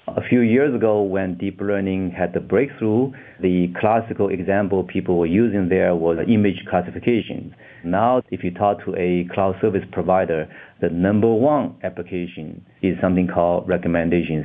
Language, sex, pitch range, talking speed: English, male, 85-105 Hz, 155 wpm